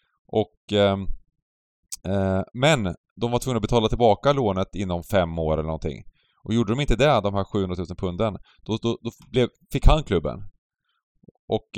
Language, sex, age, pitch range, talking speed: Swedish, male, 30-49, 95-125 Hz, 170 wpm